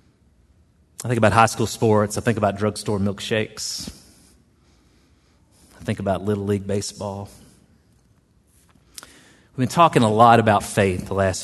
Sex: male